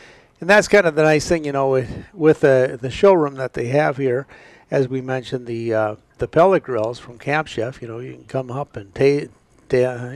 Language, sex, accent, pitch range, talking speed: English, male, American, 120-155 Hz, 230 wpm